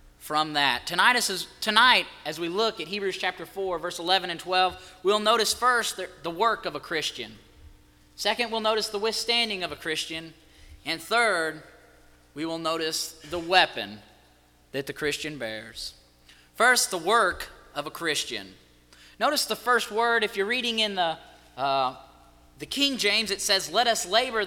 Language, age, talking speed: English, 30-49, 160 wpm